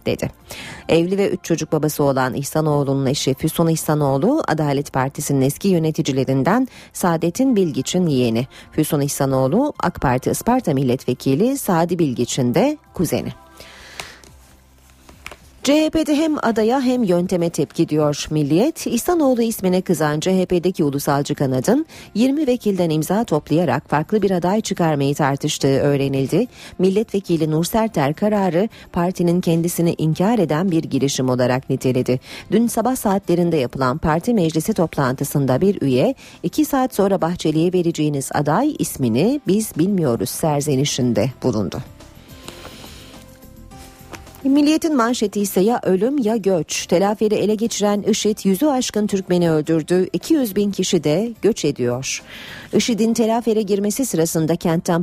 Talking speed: 120 wpm